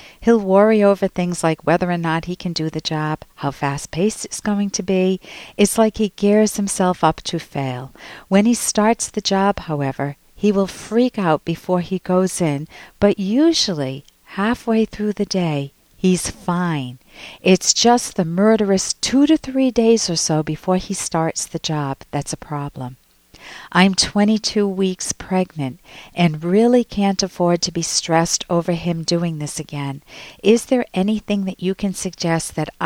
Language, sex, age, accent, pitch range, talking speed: English, female, 50-69, American, 160-205 Hz, 170 wpm